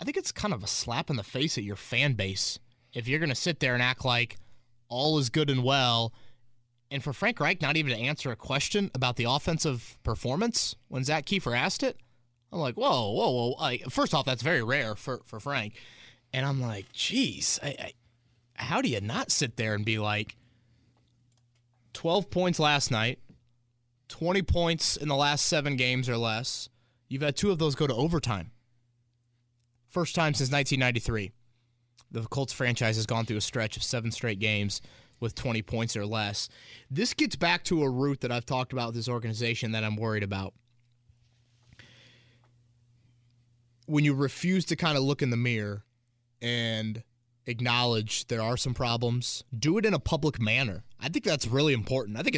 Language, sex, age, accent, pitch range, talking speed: English, male, 20-39, American, 115-140 Hz, 185 wpm